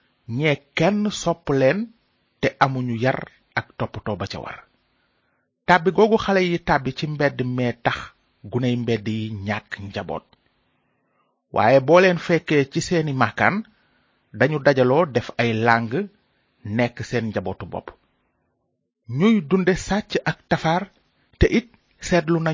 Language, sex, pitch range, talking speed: French, male, 115-175 Hz, 105 wpm